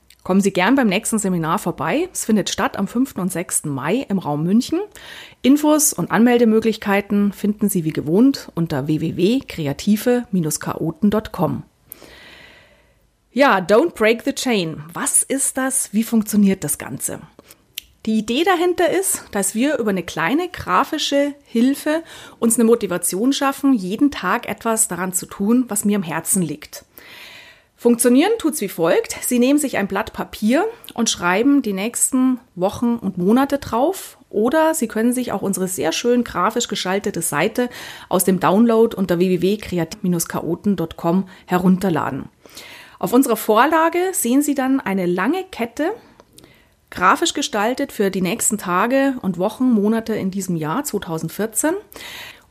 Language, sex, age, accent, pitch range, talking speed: German, female, 30-49, German, 185-265 Hz, 140 wpm